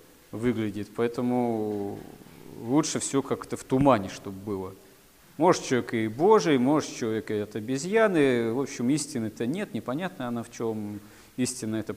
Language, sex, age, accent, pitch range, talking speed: Russian, male, 40-59, native, 110-135 Hz, 140 wpm